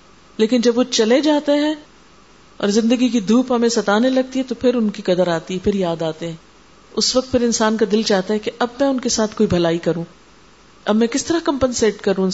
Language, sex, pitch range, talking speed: Urdu, female, 185-240 Hz, 240 wpm